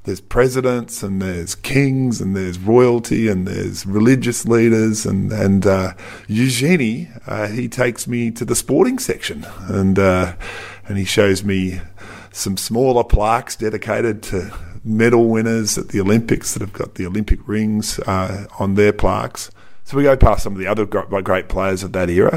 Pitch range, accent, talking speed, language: 95-110 Hz, Australian, 165 wpm, English